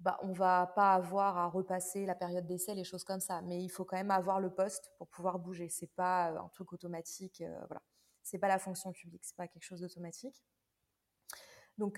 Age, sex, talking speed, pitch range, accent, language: 20-39, female, 235 wpm, 180-200 Hz, French, French